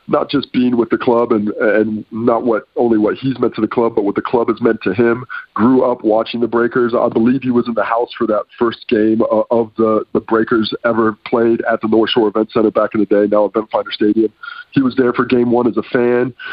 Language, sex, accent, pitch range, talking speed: English, male, American, 110-120 Hz, 255 wpm